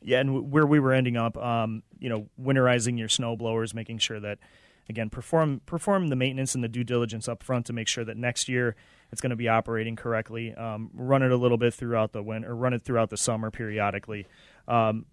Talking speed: 220 wpm